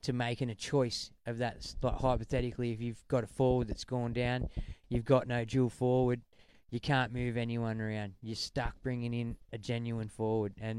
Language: English